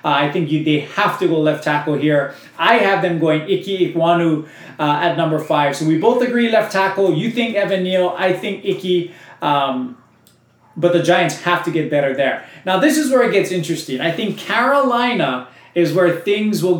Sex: male